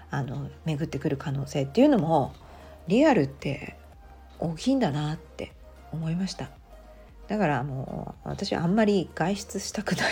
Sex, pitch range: female, 140-210 Hz